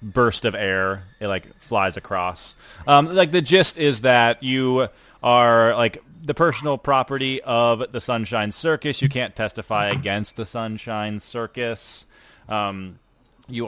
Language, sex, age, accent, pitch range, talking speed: English, male, 30-49, American, 105-125 Hz, 140 wpm